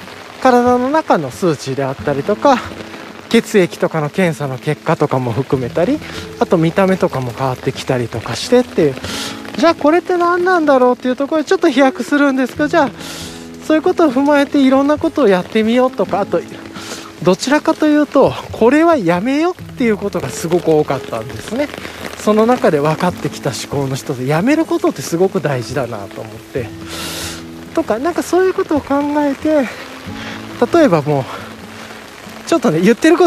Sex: male